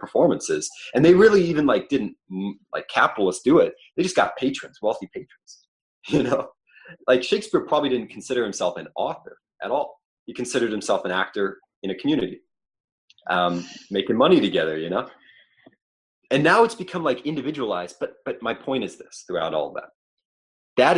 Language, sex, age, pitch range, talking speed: English, male, 30-49, 105-170 Hz, 170 wpm